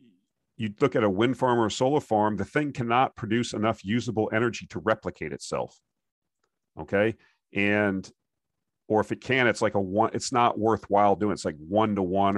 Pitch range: 95-120 Hz